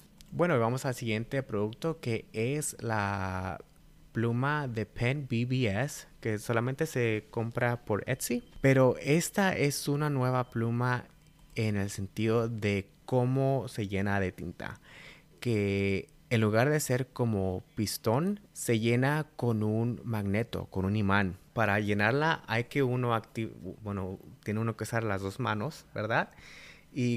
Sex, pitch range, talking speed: male, 95-125 Hz, 140 wpm